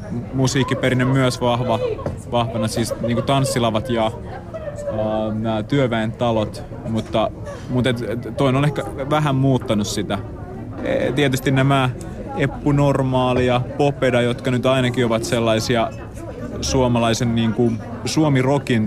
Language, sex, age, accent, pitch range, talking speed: Finnish, male, 30-49, native, 115-135 Hz, 110 wpm